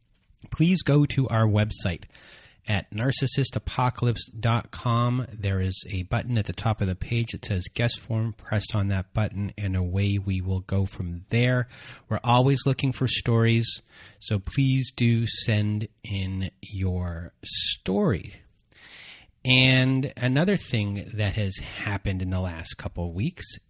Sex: male